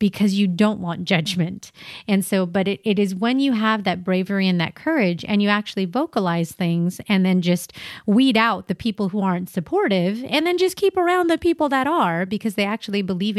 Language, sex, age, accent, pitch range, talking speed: English, female, 30-49, American, 180-215 Hz, 210 wpm